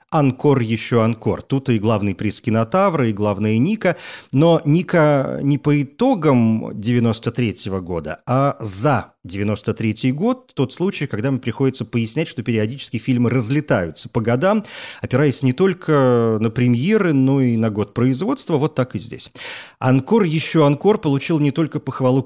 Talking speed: 150 wpm